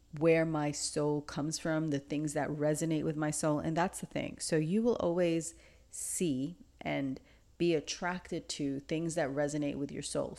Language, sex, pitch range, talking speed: English, female, 145-170 Hz, 180 wpm